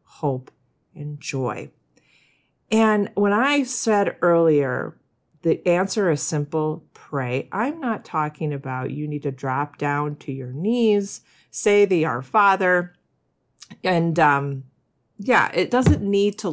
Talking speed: 130 wpm